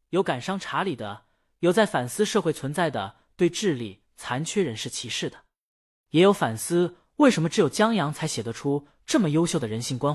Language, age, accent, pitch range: Chinese, 20-39, native, 130-195 Hz